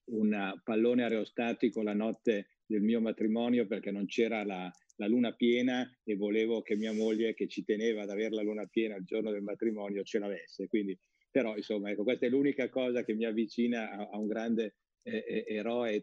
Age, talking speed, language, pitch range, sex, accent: 50-69, 190 wpm, Italian, 105-125 Hz, male, native